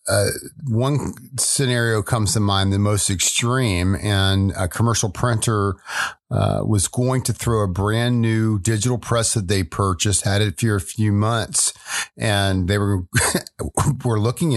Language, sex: English, male